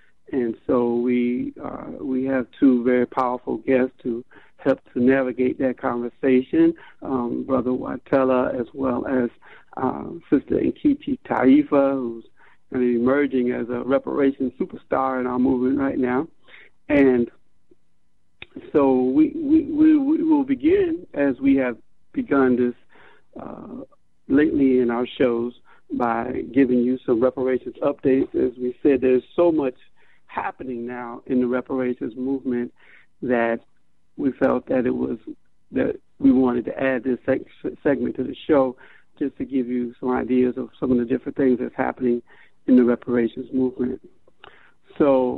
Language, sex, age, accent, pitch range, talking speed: English, male, 60-79, American, 125-135 Hz, 145 wpm